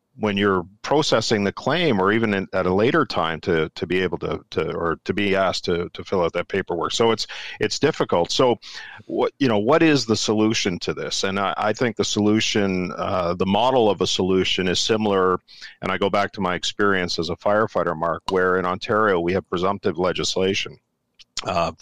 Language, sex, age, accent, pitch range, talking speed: English, male, 50-69, American, 90-110 Hz, 205 wpm